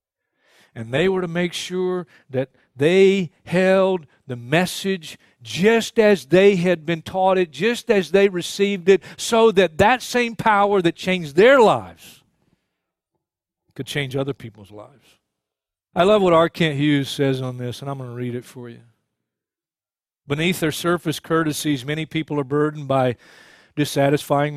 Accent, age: American, 50-69